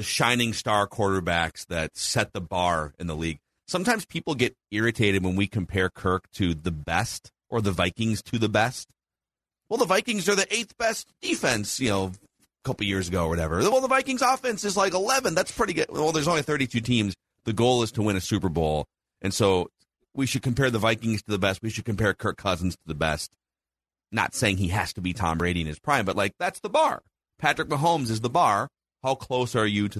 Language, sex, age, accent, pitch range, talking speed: English, male, 30-49, American, 85-125 Hz, 220 wpm